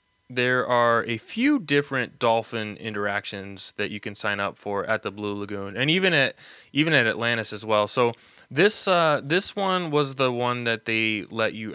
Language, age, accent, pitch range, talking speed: English, 20-39, American, 105-125 Hz, 190 wpm